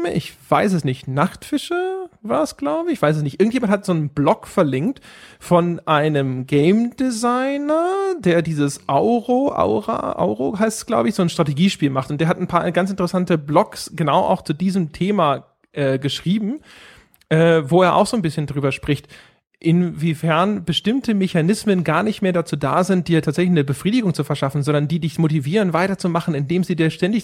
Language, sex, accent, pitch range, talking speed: German, male, German, 155-195 Hz, 185 wpm